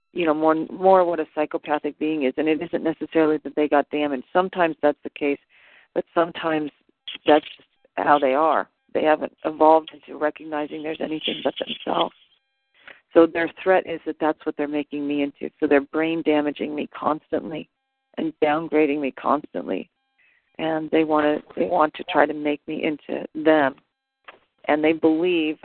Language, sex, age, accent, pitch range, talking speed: English, female, 40-59, American, 150-165 Hz, 175 wpm